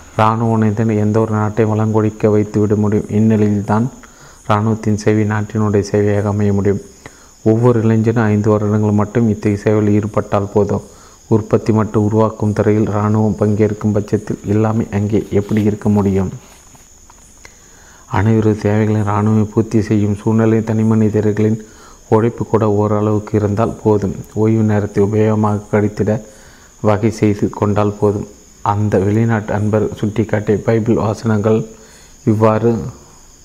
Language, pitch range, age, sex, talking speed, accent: Tamil, 105-110 Hz, 30-49, male, 115 wpm, native